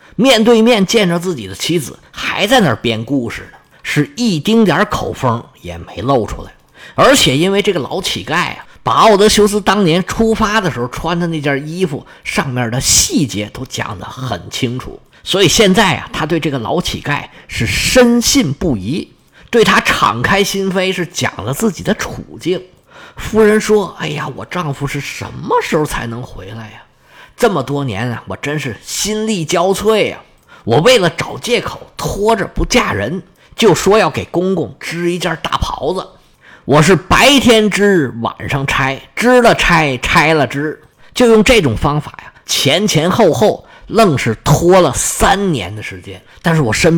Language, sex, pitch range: Chinese, male, 135-210 Hz